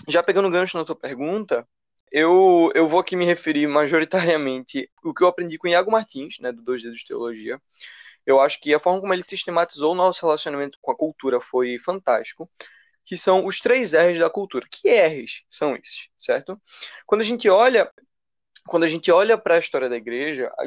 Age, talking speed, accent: 20-39, 200 wpm, Brazilian